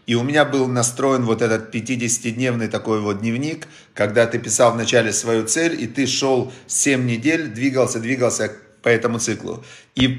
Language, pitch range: Russian, 115-140 Hz